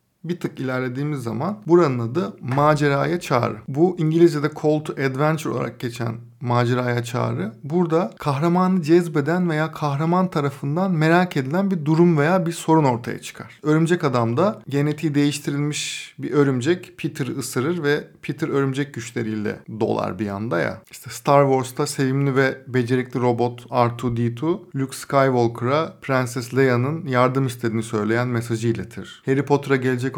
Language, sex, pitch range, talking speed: Turkish, male, 125-150 Hz, 135 wpm